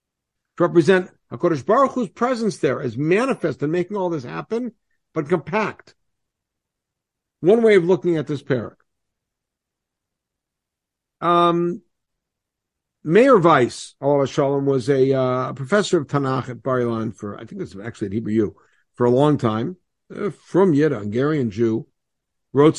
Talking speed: 140 wpm